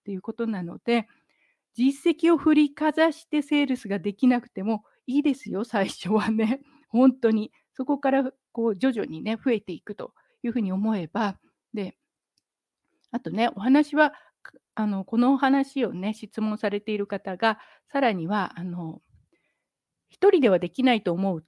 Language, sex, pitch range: Japanese, female, 215-285 Hz